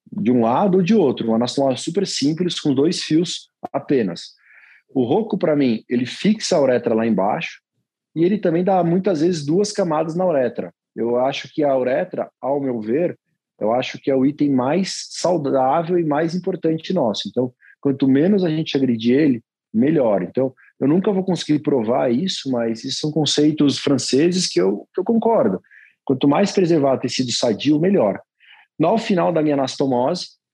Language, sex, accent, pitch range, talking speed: Portuguese, male, Brazilian, 130-170 Hz, 180 wpm